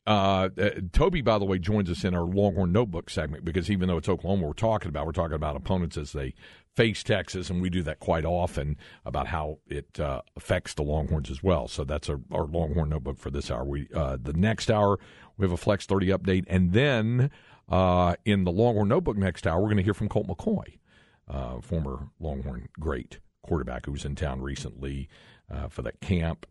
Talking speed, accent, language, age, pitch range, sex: 210 wpm, American, English, 50-69, 75-105 Hz, male